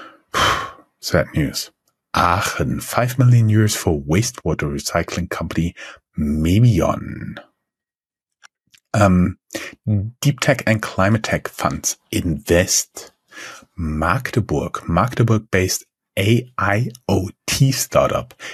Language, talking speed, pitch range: English, 80 wpm, 90-115 Hz